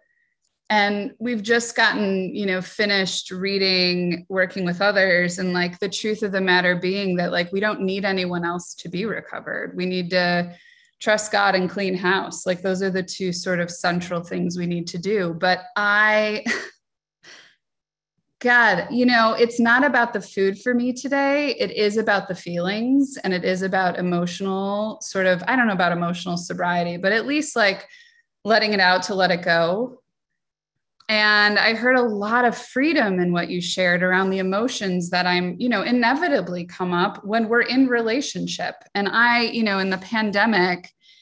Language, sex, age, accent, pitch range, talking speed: English, female, 20-39, American, 180-230 Hz, 180 wpm